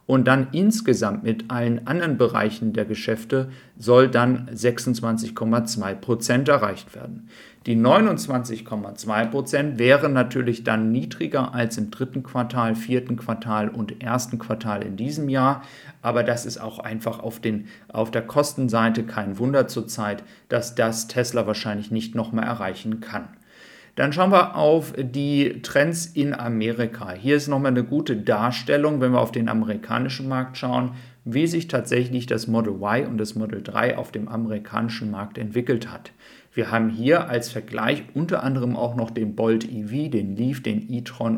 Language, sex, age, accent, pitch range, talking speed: German, male, 40-59, German, 110-130 Hz, 150 wpm